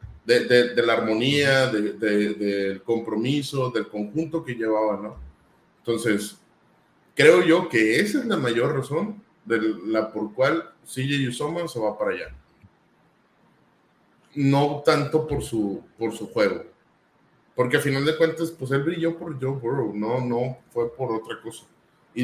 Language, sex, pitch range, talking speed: Spanish, male, 110-155 Hz, 160 wpm